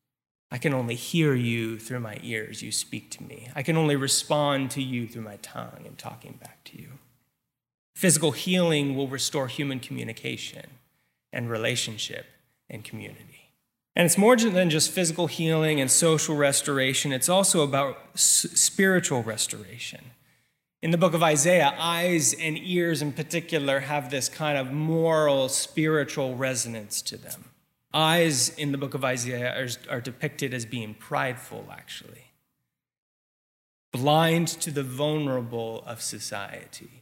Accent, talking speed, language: American, 145 wpm, English